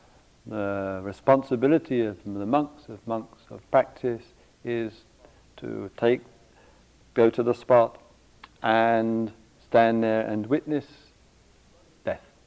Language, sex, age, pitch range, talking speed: English, male, 50-69, 110-155 Hz, 105 wpm